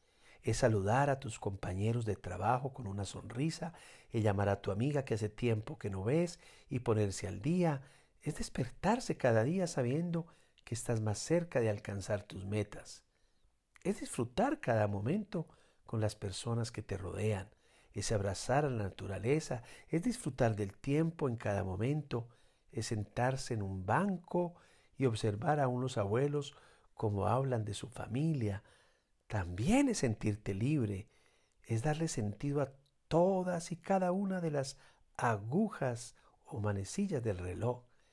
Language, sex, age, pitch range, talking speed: Spanish, male, 50-69, 105-145 Hz, 150 wpm